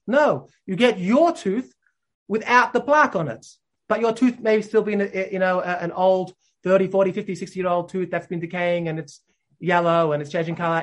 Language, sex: English, male